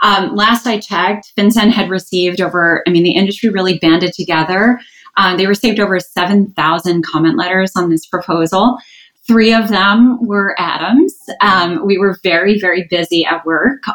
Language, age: English, 20-39